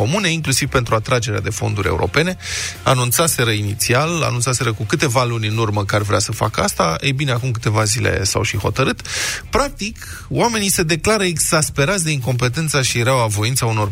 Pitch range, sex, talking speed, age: 110-140 Hz, male, 170 wpm, 20-39